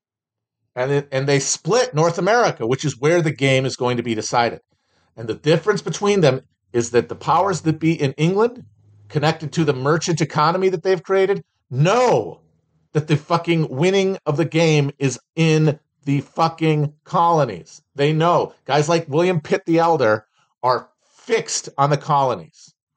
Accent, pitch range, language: American, 135-165 Hz, English